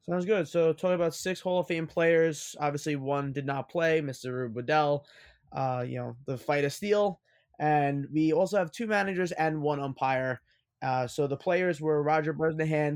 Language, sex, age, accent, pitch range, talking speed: English, male, 20-39, American, 130-155 Hz, 190 wpm